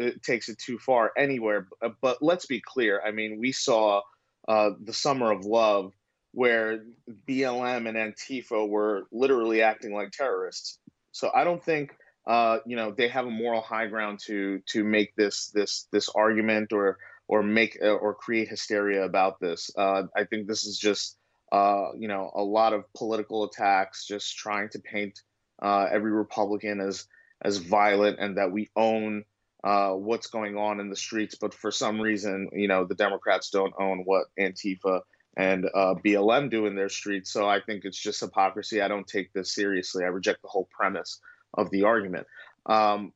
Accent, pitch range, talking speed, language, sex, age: American, 100-115 Hz, 180 wpm, English, male, 20-39